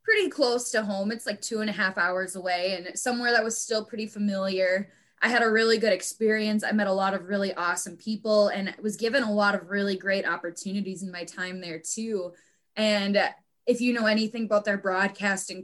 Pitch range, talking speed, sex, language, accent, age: 190-225 Hz, 210 wpm, female, English, American, 10-29